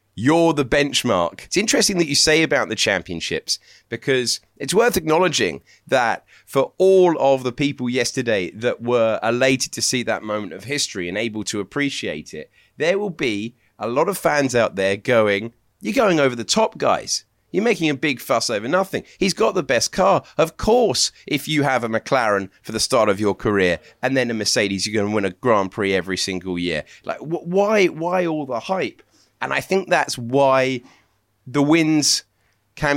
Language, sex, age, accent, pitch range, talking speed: English, male, 30-49, British, 105-155 Hz, 190 wpm